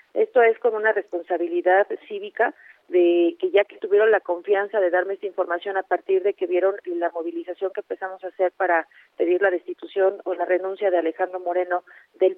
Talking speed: 190 wpm